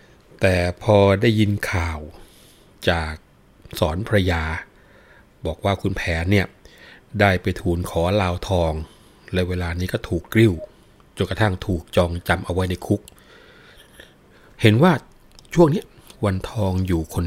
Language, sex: Thai, male